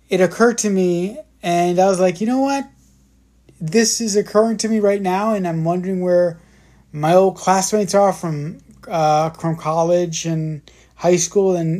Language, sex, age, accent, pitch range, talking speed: English, male, 20-39, American, 145-185 Hz, 175 wpm